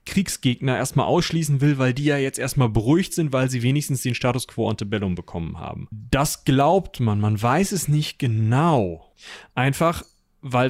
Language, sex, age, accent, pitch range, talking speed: German, male, 30-49, German, 115-140 Hz, 170 wpm